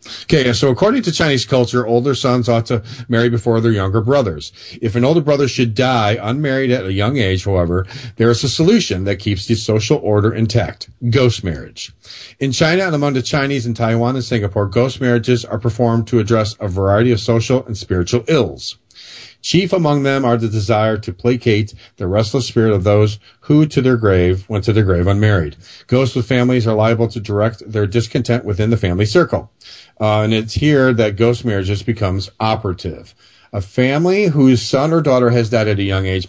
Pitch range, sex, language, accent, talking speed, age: 100-125 Hz, male, English, American, 195 wpm, 40-59